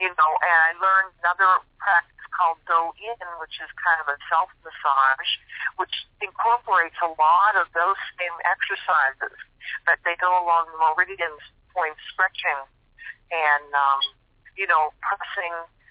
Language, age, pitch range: English, 40-59, 150-180 Hz